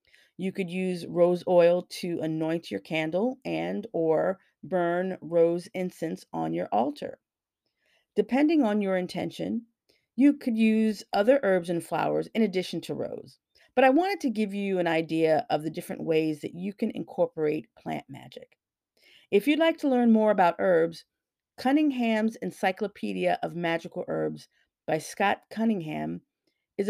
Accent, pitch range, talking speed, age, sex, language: American, 165-225 Hz, 150 wpm, 40-59, female, English